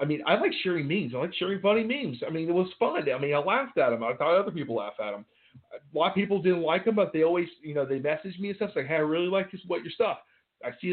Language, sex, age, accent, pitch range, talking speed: English, male, 40-59, American, 140-210 Hz, 315 wpm